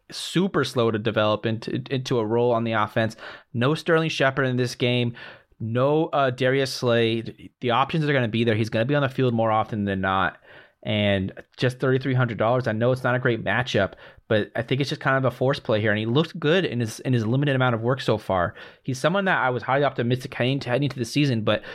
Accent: American